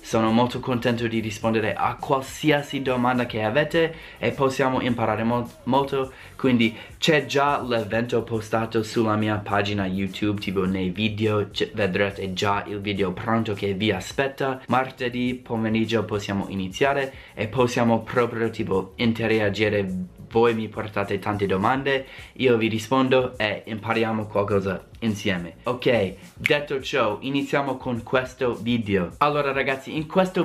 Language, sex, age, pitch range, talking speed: Italian, male, 20-39, 110-135 Hz, 135 wpm